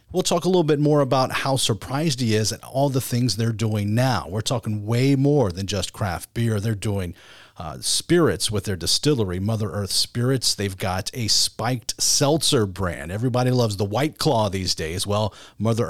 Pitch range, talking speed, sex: 105-140 Hz, 195 wpm, male